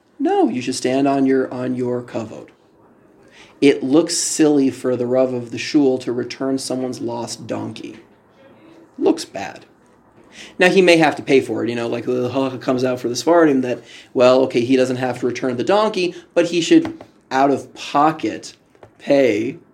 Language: English